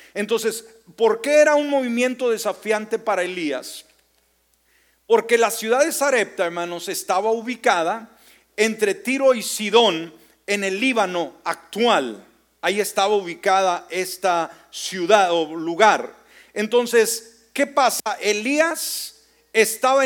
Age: 40-59